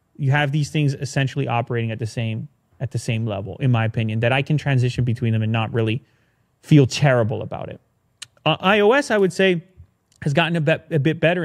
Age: 30-49